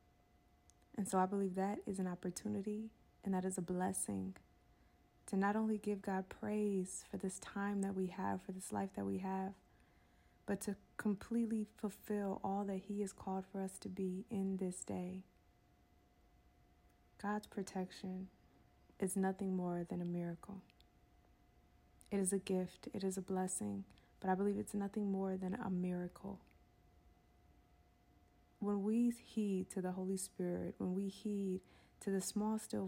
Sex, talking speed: female, 155 wpm